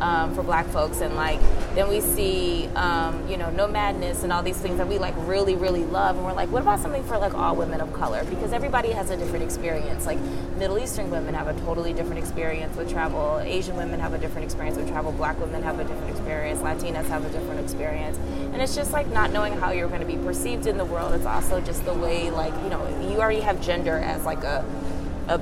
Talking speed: 245 wpm